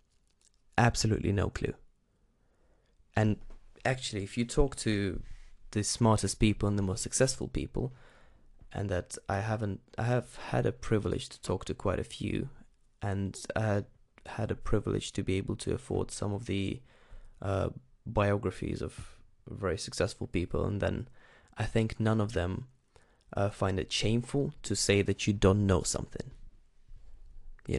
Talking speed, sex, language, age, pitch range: 150 wpm, male, English, 20-39, 100-120 Hz